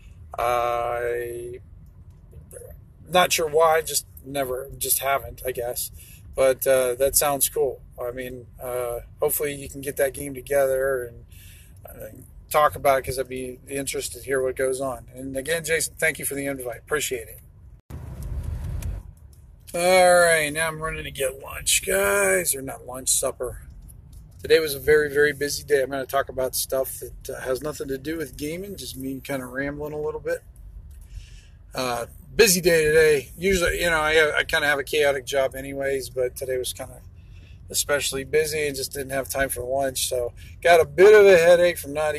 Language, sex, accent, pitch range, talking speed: English, male, American, 115-150 Hz, 185 wpm